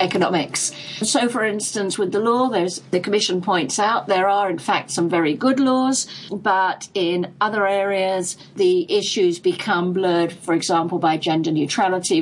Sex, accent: female, British